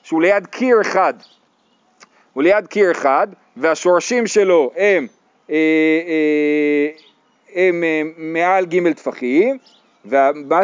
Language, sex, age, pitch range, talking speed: Hebrew, male, 40-59, 180-235 Hz, 100 wpm